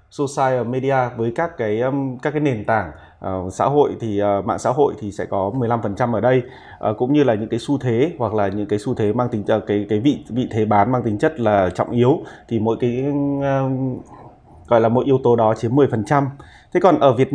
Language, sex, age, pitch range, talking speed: Vietnamese, male, 20-39, 115-145 Hz, 230 wpm